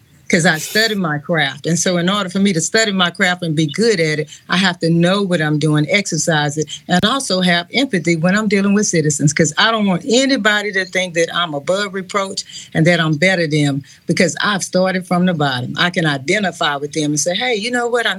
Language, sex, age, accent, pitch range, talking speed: English, female, 40-59, American, 160-195 Hz, 240 wpm